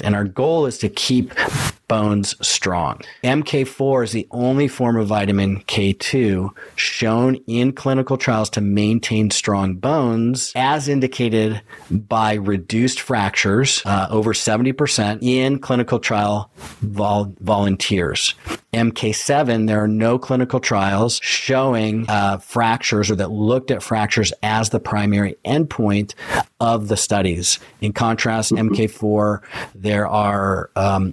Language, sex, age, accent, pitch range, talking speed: English, male, 40-59, American, 100-115 Hz, 120 wpm